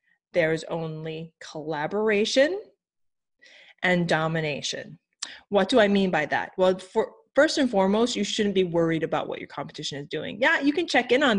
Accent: American